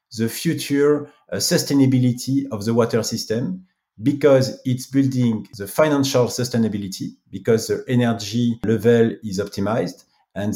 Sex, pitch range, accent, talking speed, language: male, 110-140 Hz, French, 120 wpm, English